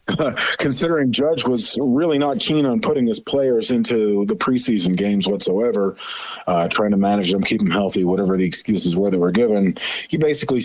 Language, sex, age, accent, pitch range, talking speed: English, male, 50-69, American, 100-145 Hz, 180 wpm